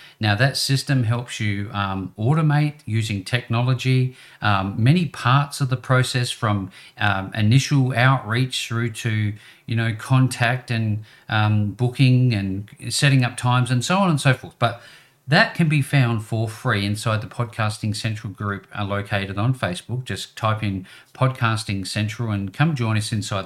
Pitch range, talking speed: 100-130 Hz, 160 wpm